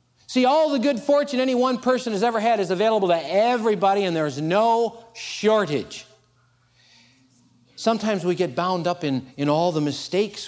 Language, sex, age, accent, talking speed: English, male, 50-69, American, 165 wpm